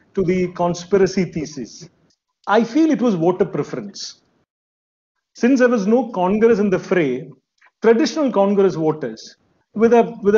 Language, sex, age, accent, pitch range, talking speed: English, male, 40-59, Indian, 175-230 Hz, 140 wpm